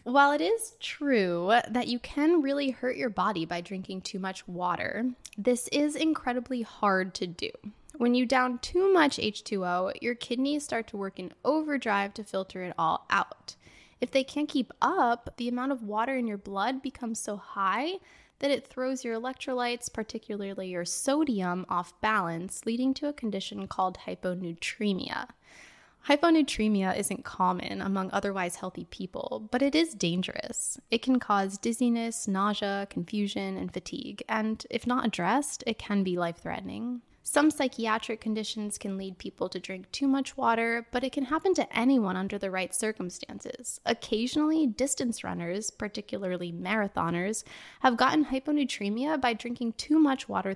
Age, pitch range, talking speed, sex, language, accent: 10-29, 195-260 Hz, 155 wpm, female, English, American